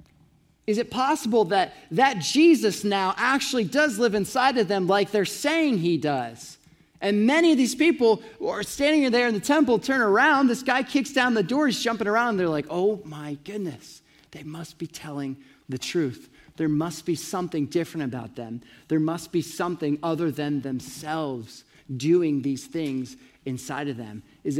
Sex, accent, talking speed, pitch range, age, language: male, American, 180 wpm, 155-260 Hz, 30-49, English